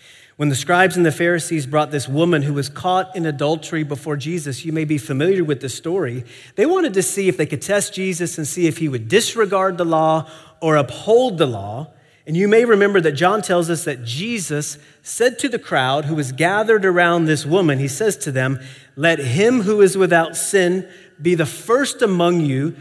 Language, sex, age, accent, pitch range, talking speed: English, male, 40-59, American, 130-180 Hz, 210 wpm